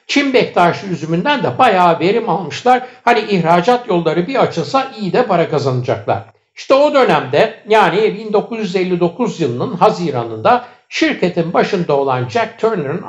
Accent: native